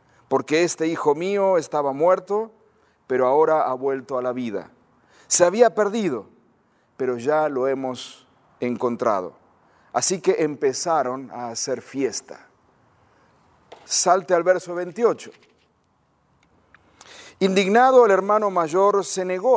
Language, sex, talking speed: Spanish, male, 115 wpm